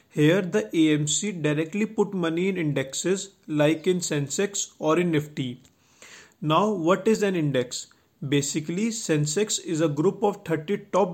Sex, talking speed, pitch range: male, 145 wpm, 150-185 Hz